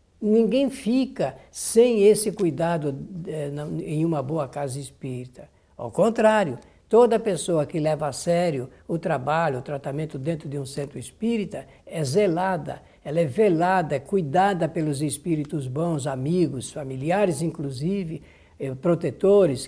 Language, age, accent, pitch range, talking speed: Portuguese, 60-79, Brazilian, 150-195 Hz, 120 wpm